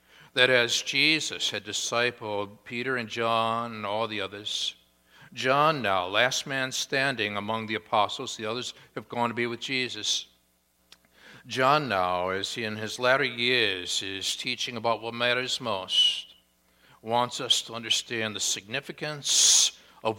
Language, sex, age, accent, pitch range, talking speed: English, male, 60-79, American, 95-120 Hz, 145 wpm